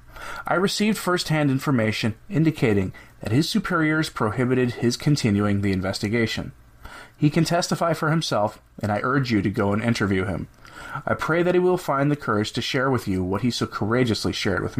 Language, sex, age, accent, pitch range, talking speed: English, male, 30-49, American, 105-145 Hz, 185 wpm